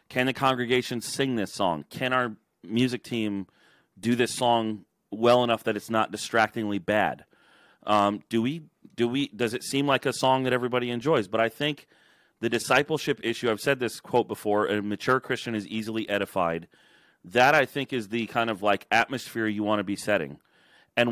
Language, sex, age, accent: English, male, 30-49, American